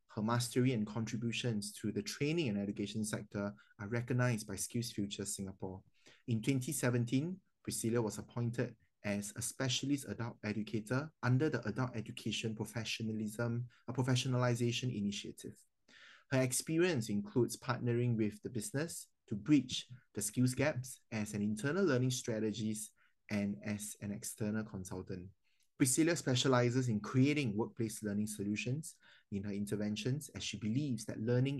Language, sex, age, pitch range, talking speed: English, male, 20-39, 105-125 Hz, 135 wpm